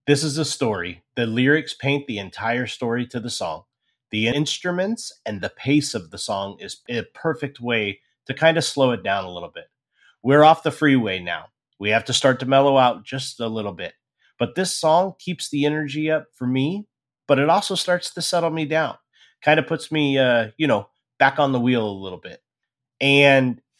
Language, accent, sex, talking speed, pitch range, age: English, American, male, 205 wpm, 120-150 Hz, 30-49